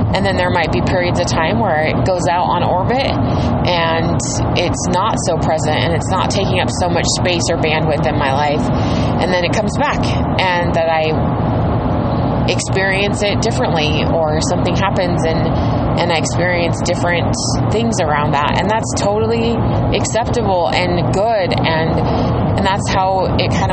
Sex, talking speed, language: female, 165 wpm, English